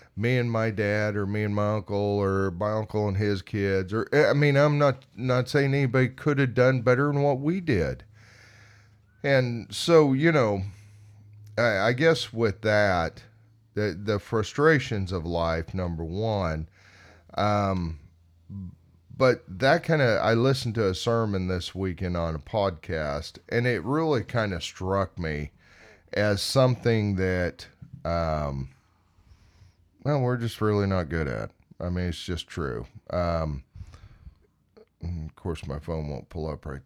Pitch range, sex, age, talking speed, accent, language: 85-115 Hz, male, 40-59, 155 wpm, American, English